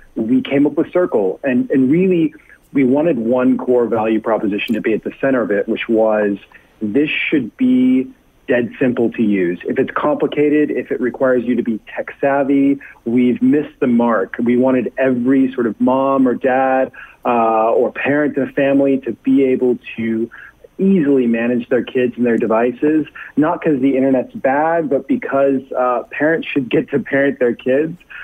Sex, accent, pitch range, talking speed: male, American, 120-150 Hz, 180 wpm